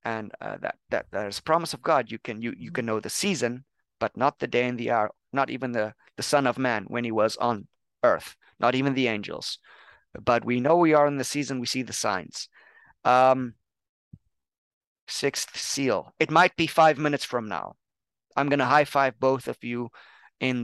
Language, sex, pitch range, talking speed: English, male, 120-145 Hz, 205 wpm